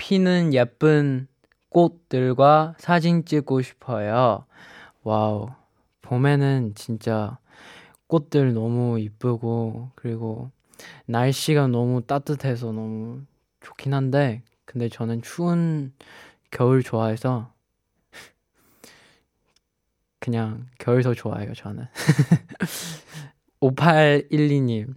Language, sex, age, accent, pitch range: Korean, male, 20-39, native, 115-145 Hz